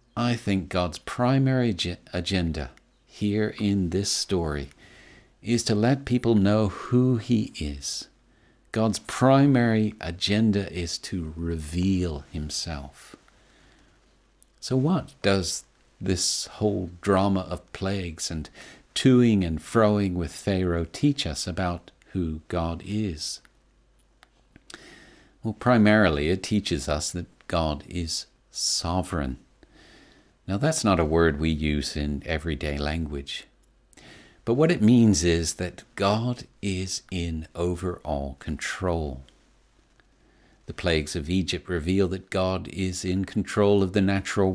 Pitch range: 85-105 Hz